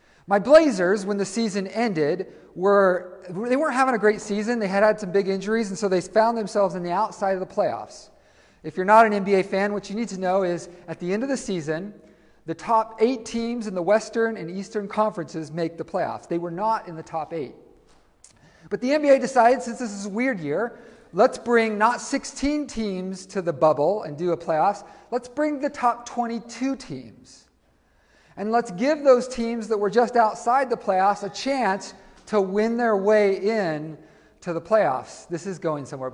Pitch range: 170-230 Hz